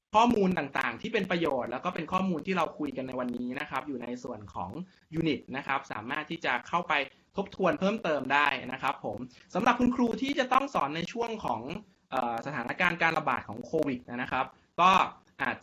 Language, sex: Thai, male